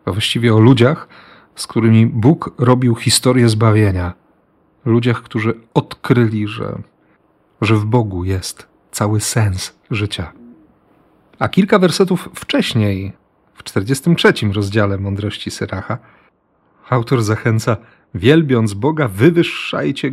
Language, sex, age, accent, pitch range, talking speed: Polish, male, 40-59, native, 105-125 Hz, 105 wpm